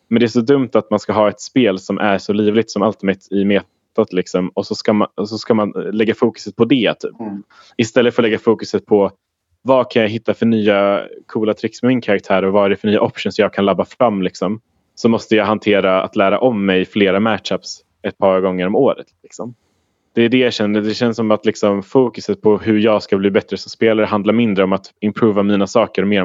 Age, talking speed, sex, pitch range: 20-39, 240 wpm, male, 95-110 Hz